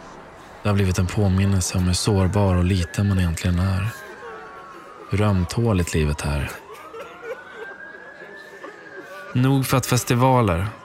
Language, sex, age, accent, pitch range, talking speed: Swedish, male, 20-39, native, 95-115 Hz, 110 wpm